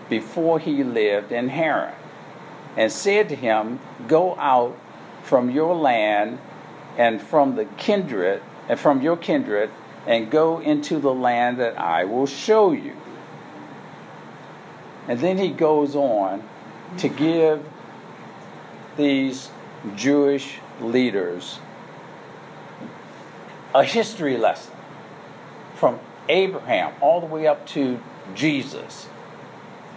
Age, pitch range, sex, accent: 60-79, 130-180 Hz, male, American